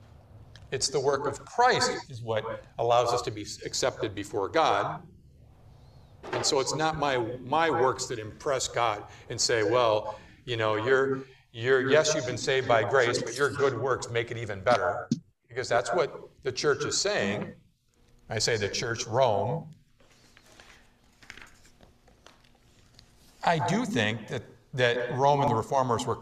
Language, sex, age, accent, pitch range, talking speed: English, male, 50-69, American, 115-155 Hz, 155 wpm